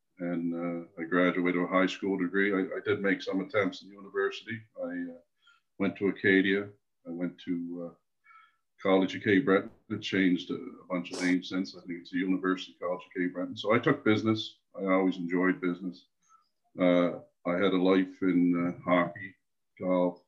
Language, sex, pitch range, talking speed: English, male, 90-105 Hz, 190 wpm